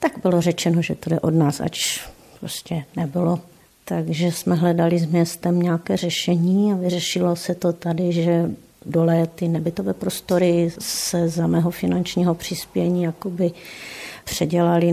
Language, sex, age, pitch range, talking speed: Czech, female, 50-69, 170-185 Hz, 135 wpm